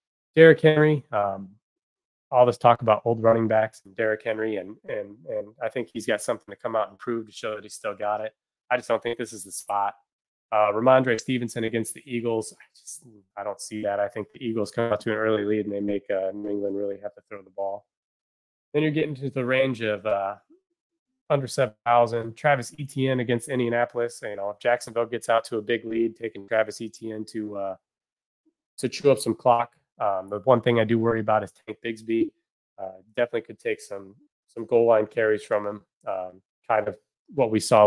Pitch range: 105-130 Hz